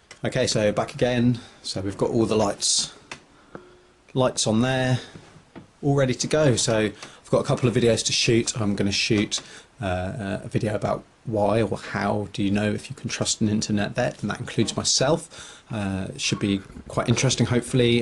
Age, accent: 30-49, British